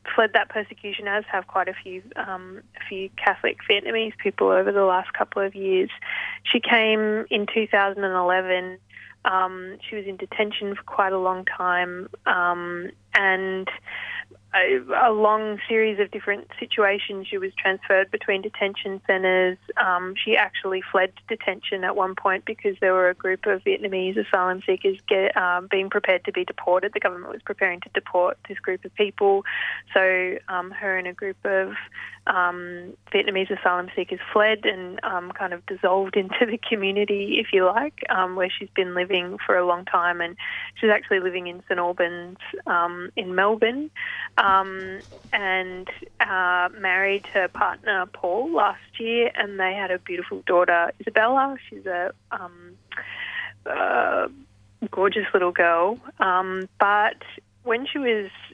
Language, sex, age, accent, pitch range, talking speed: English, female, 20-39, Australian, 180-205 Hz, 160 wpm